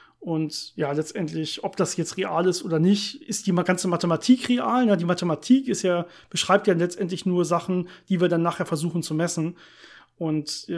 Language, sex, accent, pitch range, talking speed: German, male, German, 165-205 Hz, 180 wpm